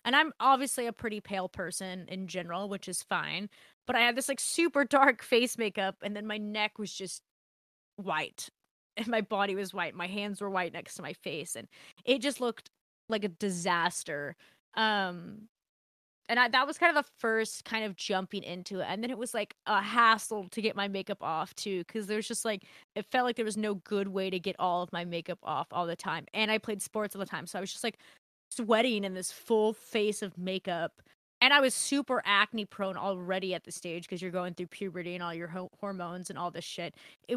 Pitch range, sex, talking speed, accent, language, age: 190-235 Hz, female, 230 wpm, American, English, 20-39